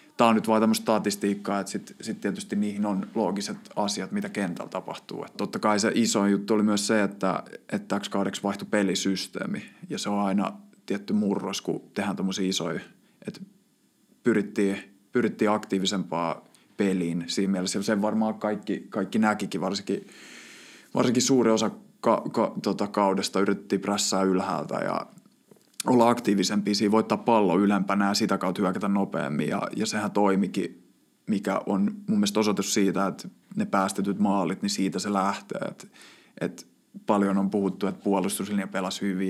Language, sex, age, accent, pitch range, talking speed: Finnish, male, 20-39, native, 95-110 Hz, 155 wpm